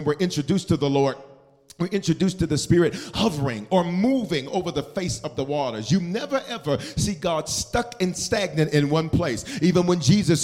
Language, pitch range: English, 165-200 Hz